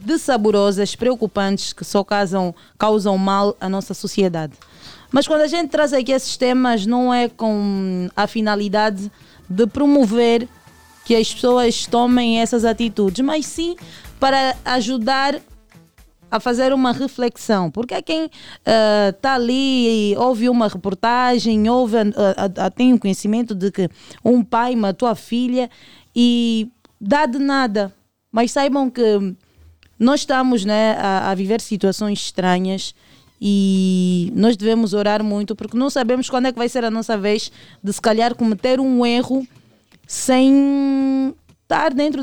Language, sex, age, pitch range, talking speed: Portuguese, female, 20-39, 200-255 Hz, 140 wpm